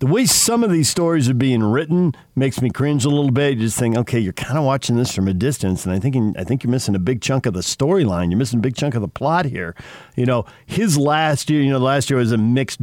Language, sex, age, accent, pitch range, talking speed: English, male, 50-69, American, 110-145 Hz, 290 wpm